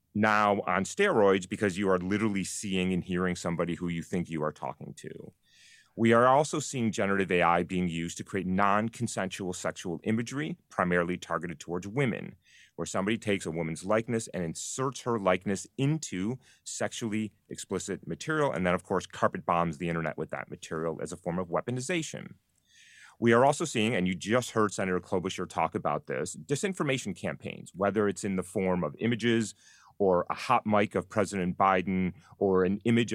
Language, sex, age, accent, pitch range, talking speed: English, male, 30-49, American, 90-115 Hz, 175 wpm